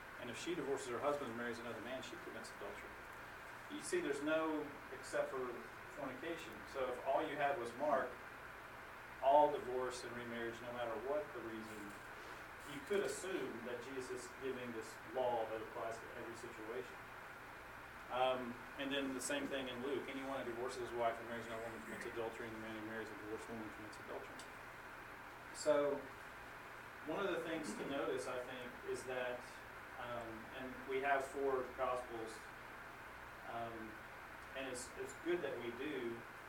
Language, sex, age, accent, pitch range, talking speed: English, male, 40-59, American, 115-140 Hz, 170 wpm